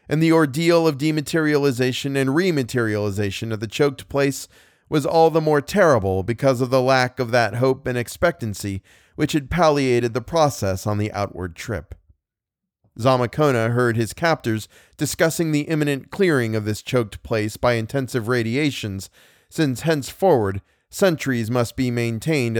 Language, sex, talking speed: English, male, 145 wpm